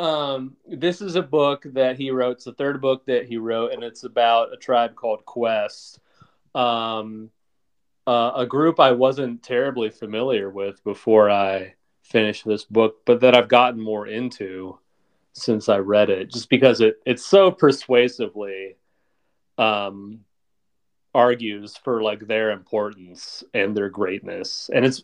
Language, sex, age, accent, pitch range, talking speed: English, male, 30-49, American, 105-130 Hz, 150 wpm